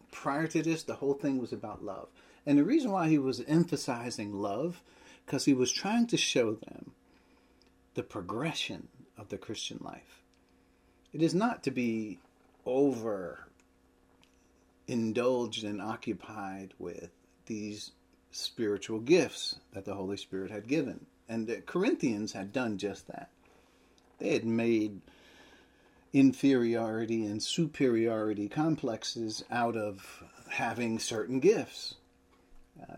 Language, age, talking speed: English, 40-59, 125 wpm